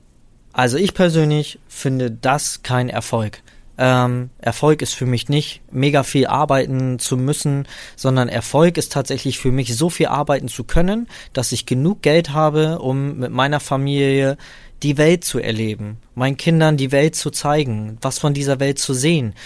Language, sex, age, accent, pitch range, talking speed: German, male, 20-39, German, 125-150 Hz, 165 wpm